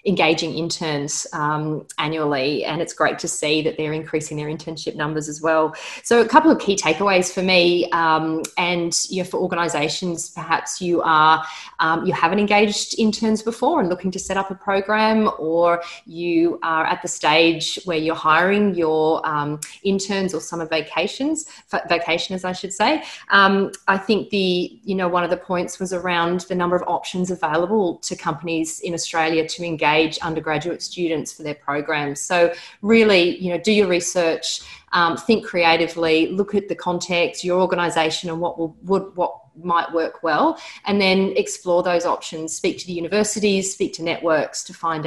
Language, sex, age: English, female, 30-49